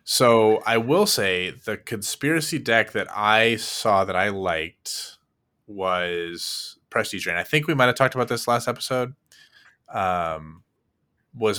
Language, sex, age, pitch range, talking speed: English, male, 20-39, 100-125 Hz, 145 wpm